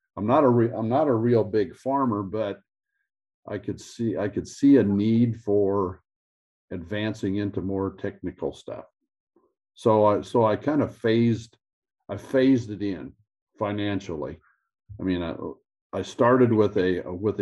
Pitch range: 95-115 Hz